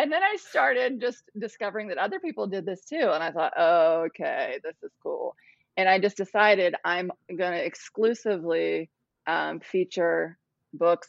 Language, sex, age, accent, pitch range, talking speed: English, female, 20-39, American, 165-205 Hz, 170 wpm